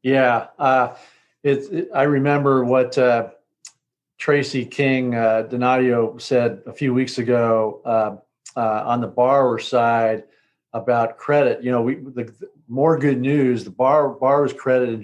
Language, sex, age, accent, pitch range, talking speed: English, male, 50-69, American, 120-135 Hz, 150 wpm